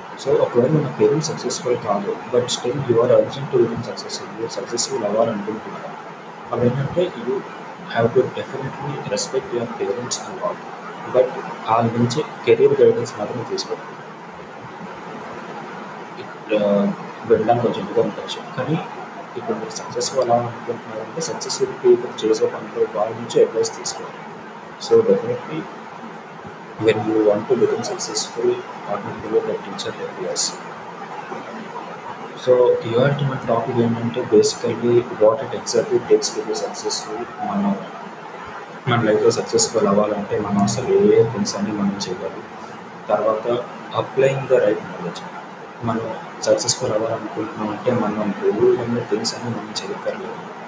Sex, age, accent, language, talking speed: male, 30-49, native, Telugu, 125 wpm